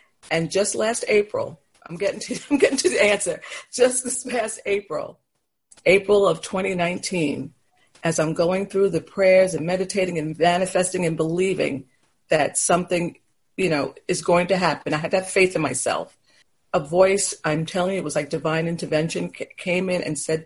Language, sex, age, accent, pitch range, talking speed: English, female, 50-69, American, 160-200 Hz, 175 wpm